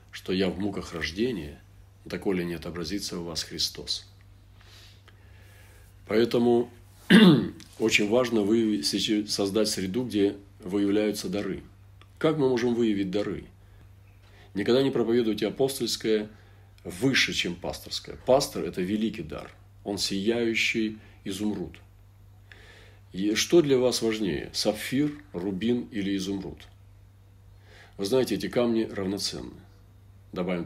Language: Russian